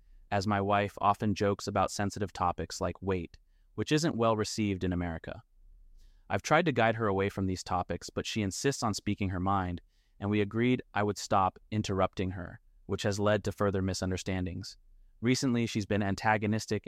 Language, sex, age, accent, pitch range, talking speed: English, male, 30-49, American, 90-105 Hz, 175 wpm